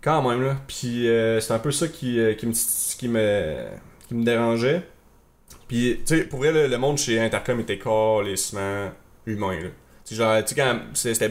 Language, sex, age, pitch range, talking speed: French, male, 20-39, 100-120 Hz, 195 wpm